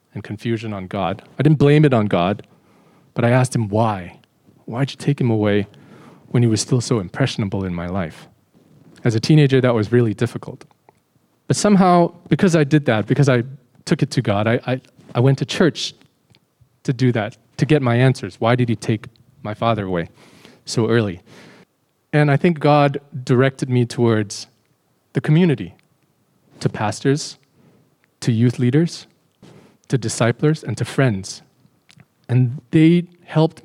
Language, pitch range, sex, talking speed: English, 110-145 Hz, male, 160 wpm